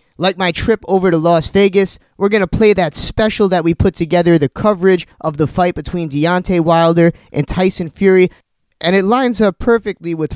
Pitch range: 170-215 Hz